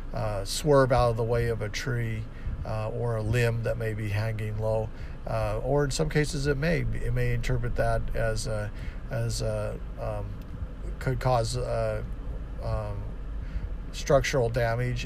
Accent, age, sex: American, 50-69, male